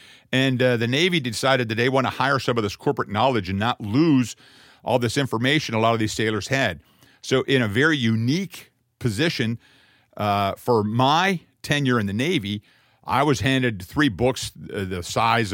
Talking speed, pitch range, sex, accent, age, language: 180 wpm, 105-135 Hz, male, American, 50-69, English